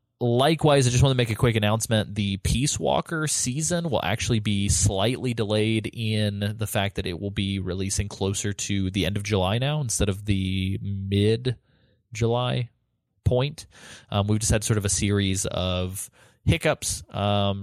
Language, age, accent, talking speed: English, 20-39, American, 165 wpm